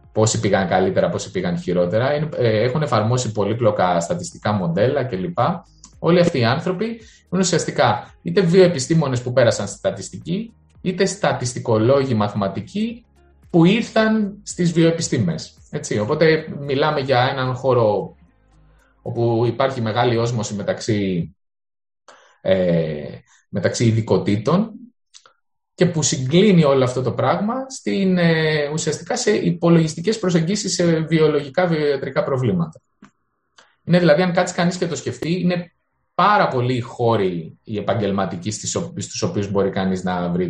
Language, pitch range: Greek, 105-175 Hz